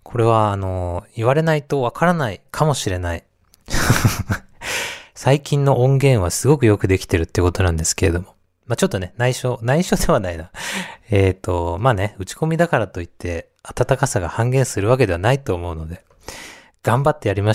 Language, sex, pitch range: Japanese, male, 90-125 Hz